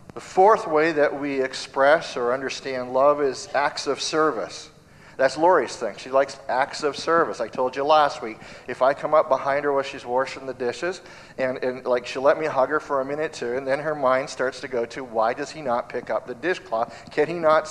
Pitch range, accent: 125-155 Hz, American